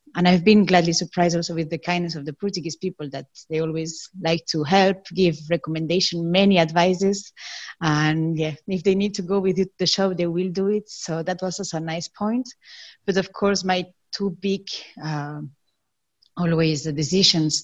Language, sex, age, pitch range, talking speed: English, female, 30-49, 160-190 Hz, 185 wpm